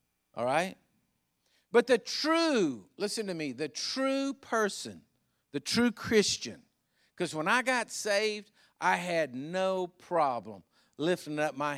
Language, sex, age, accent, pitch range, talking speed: English, male, 50-69, American, 120-195 Hz, 120 wpm